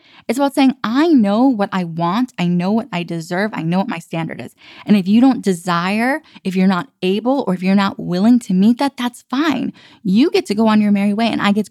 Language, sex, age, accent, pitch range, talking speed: English, female, 10-29, American, 195-270 Hz, 255 wpm